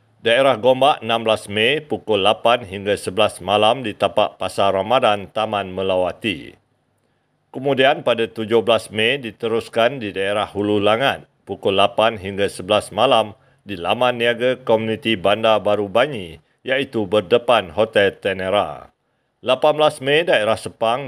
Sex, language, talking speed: male, Malay, 125 wpm